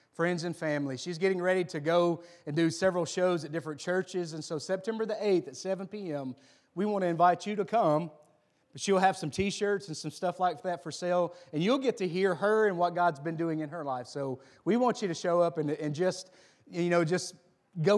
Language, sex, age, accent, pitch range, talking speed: English, male, 30-49, American, 150-195 Hz, 230 wpm